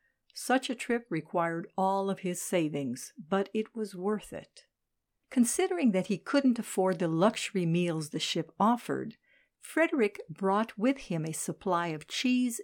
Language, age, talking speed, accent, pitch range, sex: English, 60-79, 150 wpm, American, 165-215 Hz, female